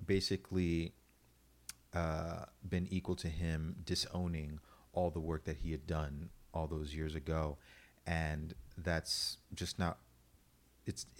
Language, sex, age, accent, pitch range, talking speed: English, male, 30-49, American, 80-95 Hz, 125 wpm